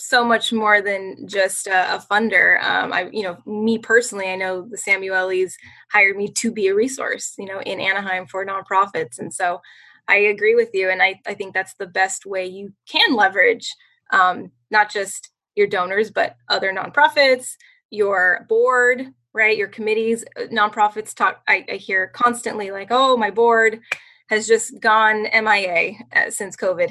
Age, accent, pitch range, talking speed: 10-29, American, 195-245 Hz, 170 wpm